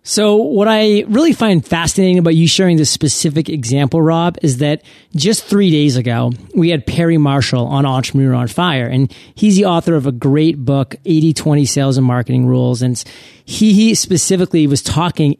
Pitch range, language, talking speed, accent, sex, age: 140-180 Hz, English, 185 wpm, American, male, 30-49